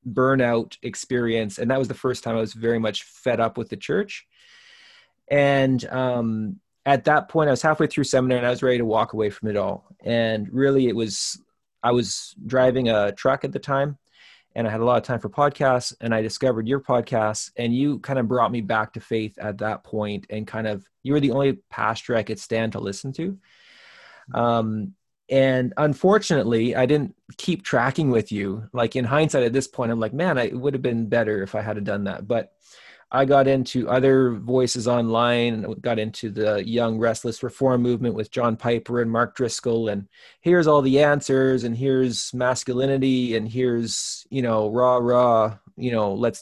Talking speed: 200 wpm